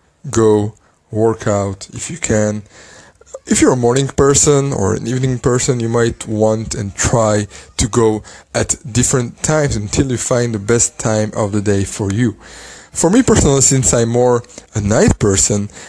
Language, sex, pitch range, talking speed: English, male, 110-130 Hz, 170 wpm